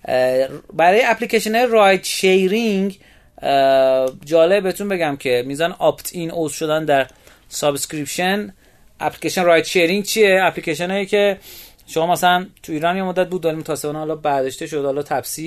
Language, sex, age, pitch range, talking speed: Persian, male, 30-49, 130-185 Hz, 135 wpm